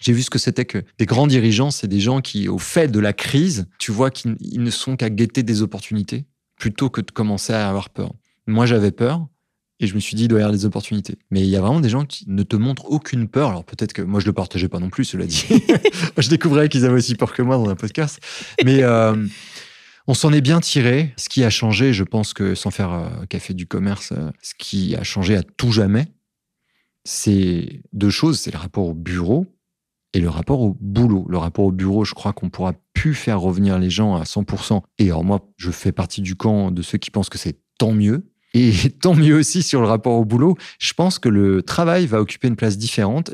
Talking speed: 240 wpm